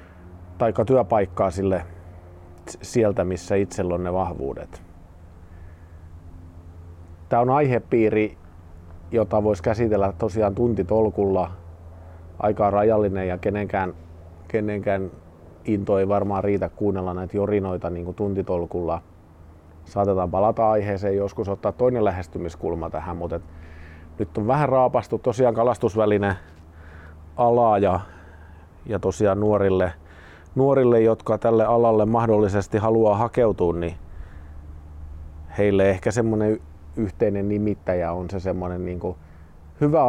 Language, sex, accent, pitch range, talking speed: Finnish, male, native, 80-105 Hz, 105 wpm